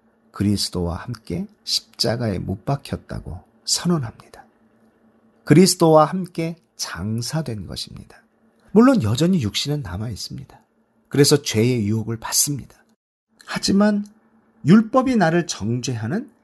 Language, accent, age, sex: Korean, native, 40-59, male